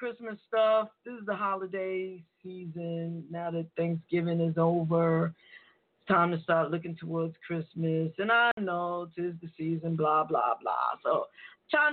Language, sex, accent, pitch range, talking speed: English, female, American, 175-220 Hz, 155 wpm